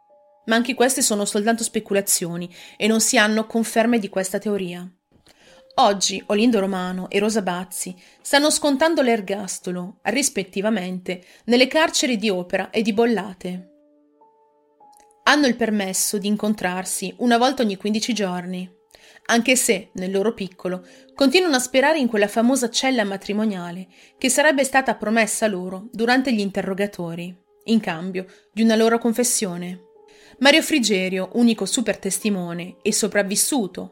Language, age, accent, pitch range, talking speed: Italian, 30-49, native, 190-265 Hz, 135 wpm